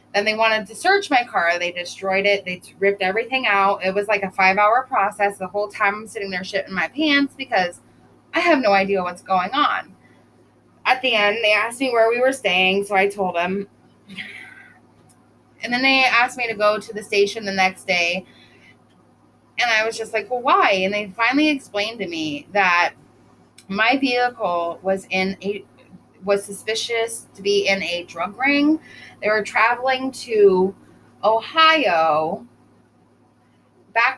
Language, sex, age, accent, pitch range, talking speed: English, female, 20-39, American, 195-255 Hz, 170 wpm